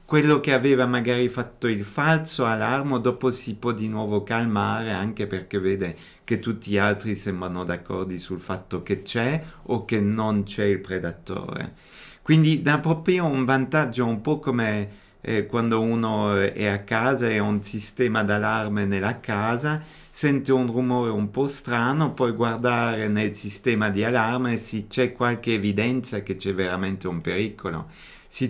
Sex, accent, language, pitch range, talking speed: male, native, Italian, 100-125 Hz, 160 wpm